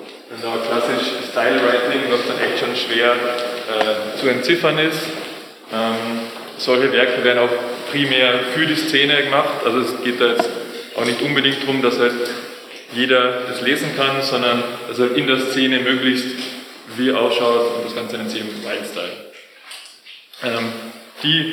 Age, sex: 20-39, male